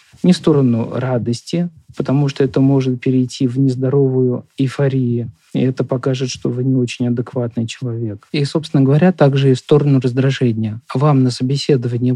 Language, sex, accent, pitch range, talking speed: Russian, male, native, 120-145 Hz, 160 wpm